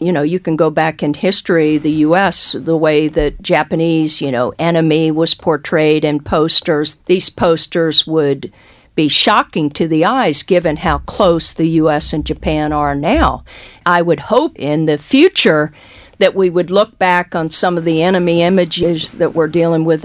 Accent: American